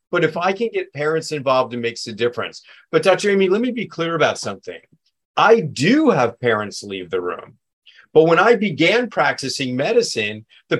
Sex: male